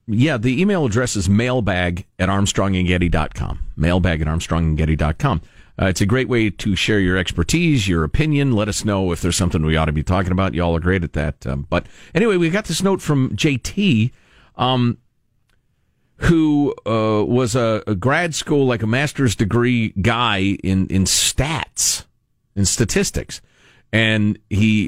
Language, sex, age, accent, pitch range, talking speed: English, male, 40-59, American, 95-140 Hz, 170 wpm